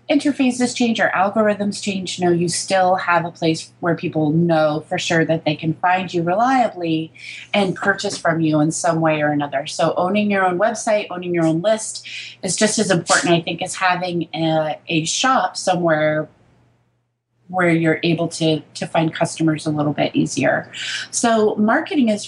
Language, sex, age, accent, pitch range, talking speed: English, female, 30-49, American, 165-210 Hz, 180 wpm